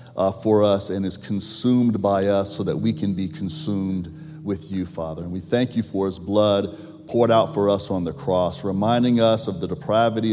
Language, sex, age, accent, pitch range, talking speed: English, male, 40-59, American, 100-125 Hz, 210 wpm